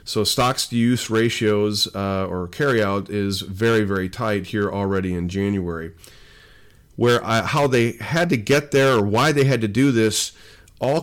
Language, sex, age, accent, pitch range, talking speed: English, male, 40-59, American, 95-115 Hz, 165 wpm